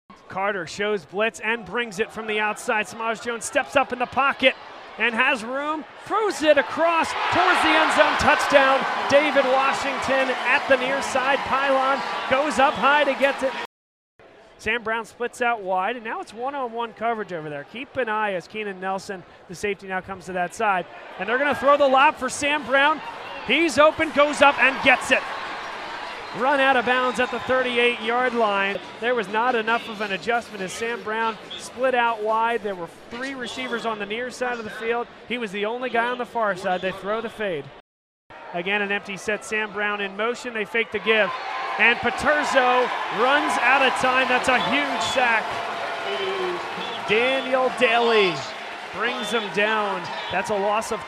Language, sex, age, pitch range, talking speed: English, male, 30-49, 210-260 Hz, 185 wpm